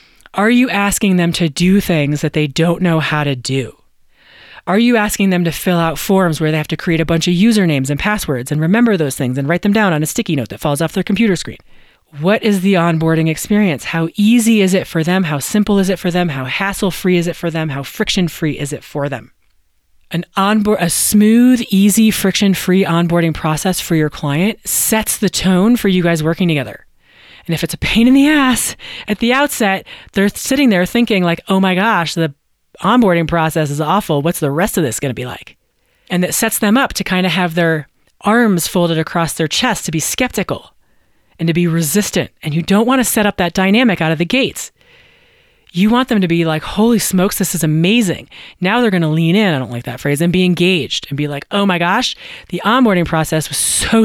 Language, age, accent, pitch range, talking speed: English, 30-49, American, 160-210 Hz, 225 wpm